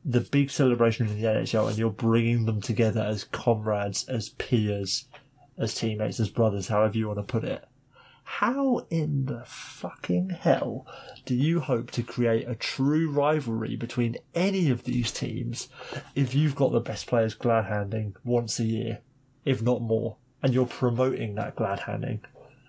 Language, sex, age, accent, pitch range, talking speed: English, male, 20-39, British, 115-135 Hz, 160 wpm